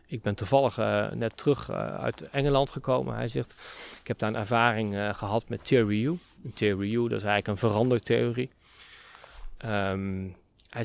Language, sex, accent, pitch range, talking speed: Dutch, male, Dutch, 115-135 Hz, 165 wpm